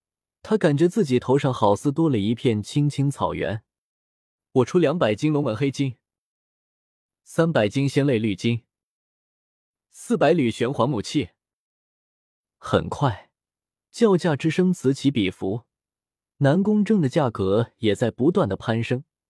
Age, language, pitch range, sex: 20-39, Chinese, 115-175 Hz, male